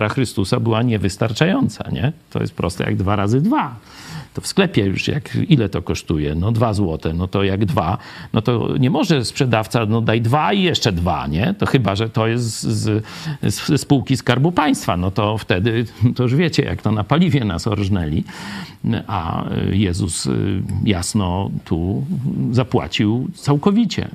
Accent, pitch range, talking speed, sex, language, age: native, 105-145 Hz, 160 wpm, male, Polish, 50-69